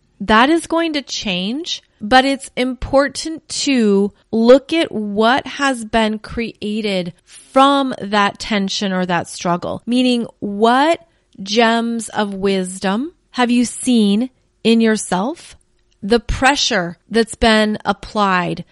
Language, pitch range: English, 205-240 Hz